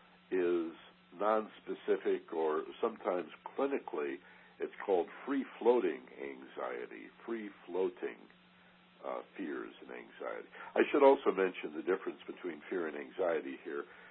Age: 60-79